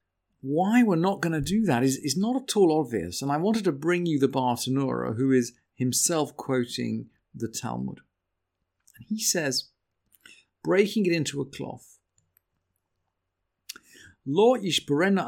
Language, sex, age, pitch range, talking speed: English, male, 50-69, 120-180 Hz, 140 wpm